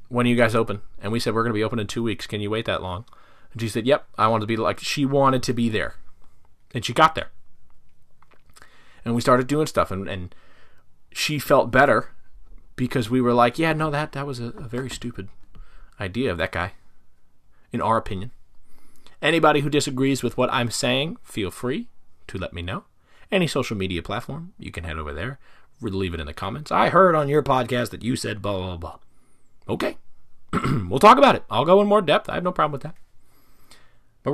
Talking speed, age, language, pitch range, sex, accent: 220 wpm, 30-49, English, 100-150 Hz, male, American